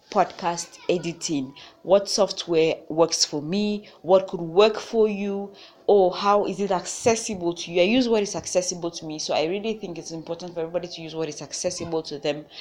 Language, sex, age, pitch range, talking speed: English, female, 20-39, 165-205 Hz, 195 wpm